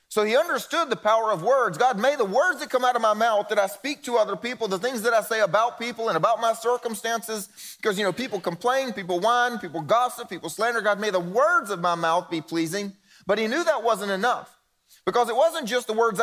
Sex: male